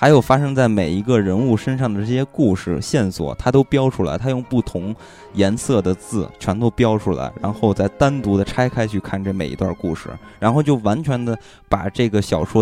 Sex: male